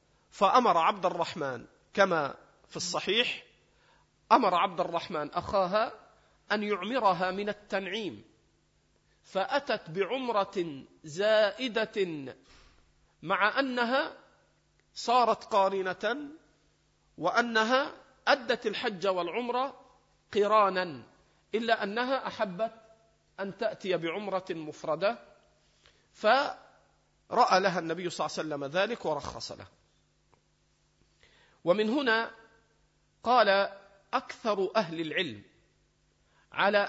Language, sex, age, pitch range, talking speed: Arabic, male, 50-69, 175-230 Hz, 80 wpm